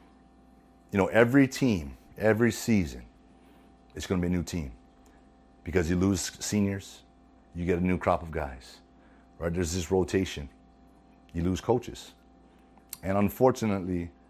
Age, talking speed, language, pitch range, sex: 30-49, 140 wpm, English, 90-115 Hz, male